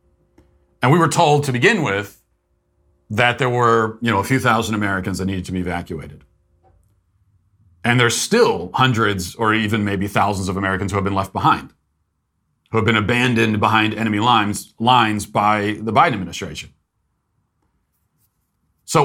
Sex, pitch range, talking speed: male, 105-135 Hz, 155 wpm